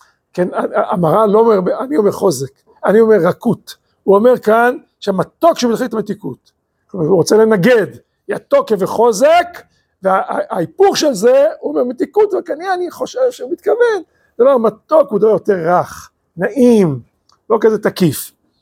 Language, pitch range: Hebrew, 200-295 Hz